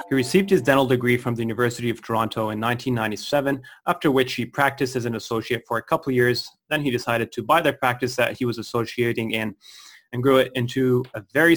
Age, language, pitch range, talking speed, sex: 30-49, English, 115-135 Hz, 220 wpm, male